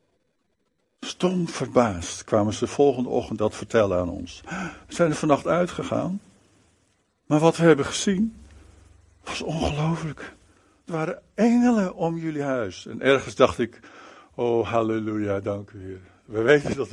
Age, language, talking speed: 60-79, Dutch, 145 wpm